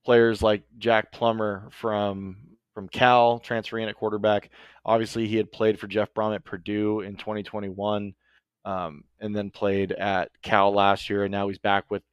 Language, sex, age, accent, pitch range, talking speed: English, male, 20-39, American, 100-115 Hz, 170 wpm